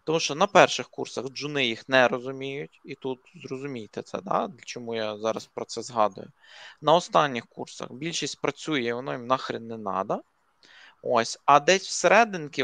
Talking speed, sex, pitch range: 165 wpm, male, 130-170 Hz